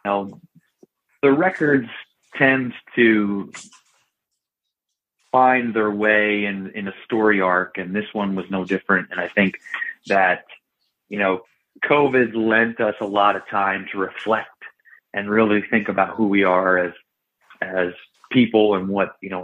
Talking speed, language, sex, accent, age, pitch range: 150 wpm, English, male, American, 30-49, 95-110 Hz